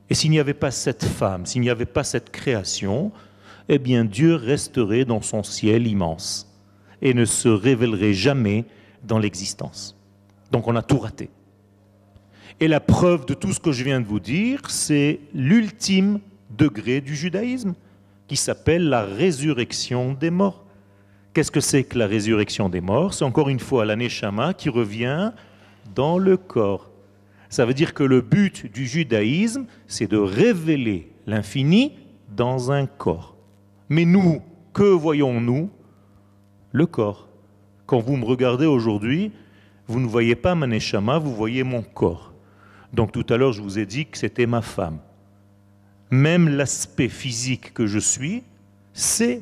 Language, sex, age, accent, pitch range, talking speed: French, male, 40-59, French, 100-145 Hz, 155 wpm